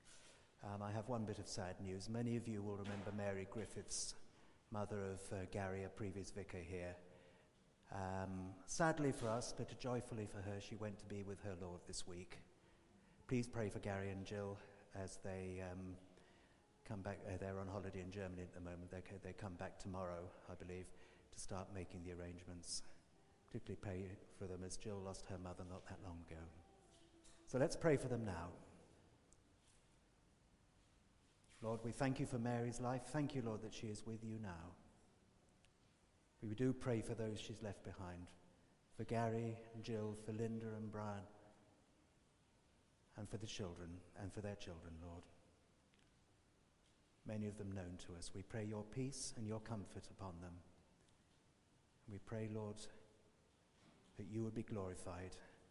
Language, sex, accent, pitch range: English, male, British, 90-110 Hz